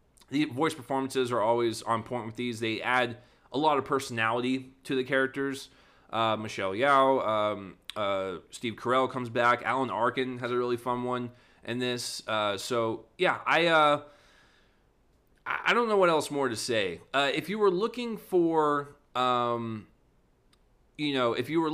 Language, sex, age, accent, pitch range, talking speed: English, male, 20-39, American, 120-145 Hz, 170 wpm